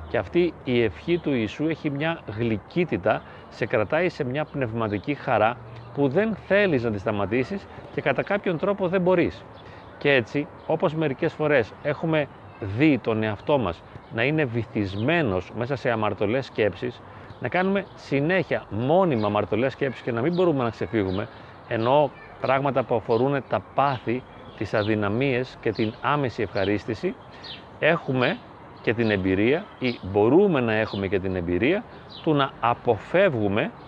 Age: 30-49